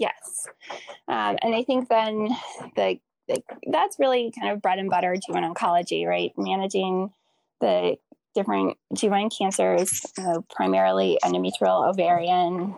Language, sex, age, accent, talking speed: English, female, 10-29, American, 130 wpm